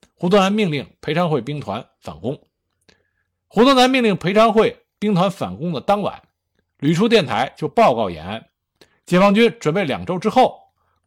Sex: male